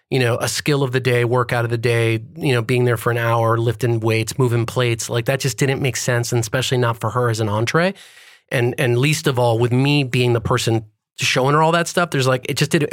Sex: male